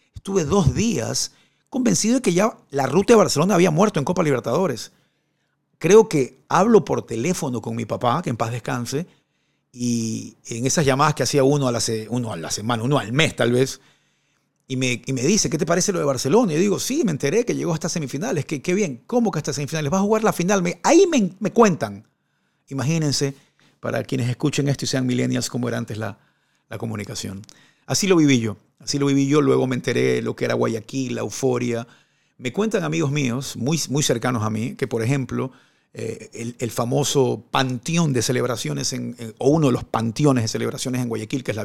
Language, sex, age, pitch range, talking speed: Spanish, male, 50-69, 120-150 Hz, 210 wpm